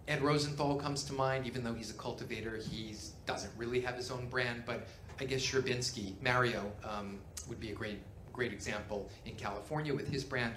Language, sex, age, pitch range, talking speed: English, male, 40-59, 105-135 Hz, 195 wpm